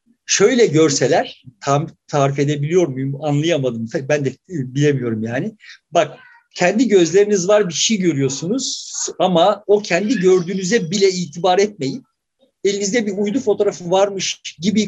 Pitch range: 165-220 Hz